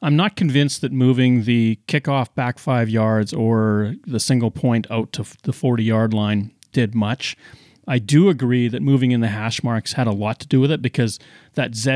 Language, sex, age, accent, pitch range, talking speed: English, male, 40-59, American, 120-150 Hz, 205 wpm